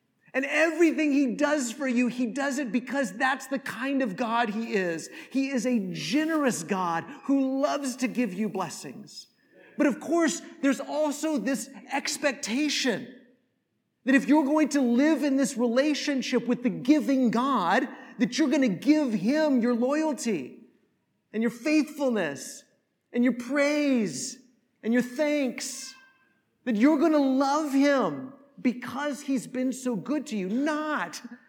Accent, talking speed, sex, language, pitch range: American, 150 wpm, male, English, 225-280 Hz